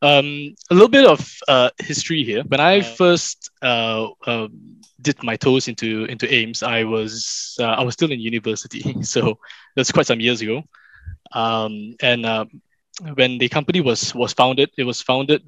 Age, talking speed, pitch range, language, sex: 20-39, 175 wpm, 115-145 Hz, English, male